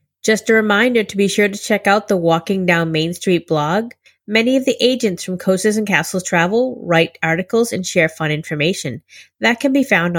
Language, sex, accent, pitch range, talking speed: English, female, American, 175-225 Hz, 200 wpm